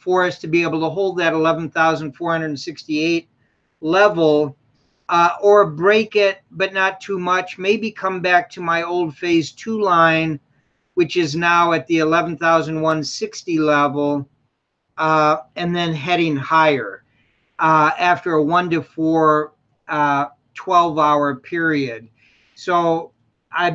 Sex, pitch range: male, 155-180 Hz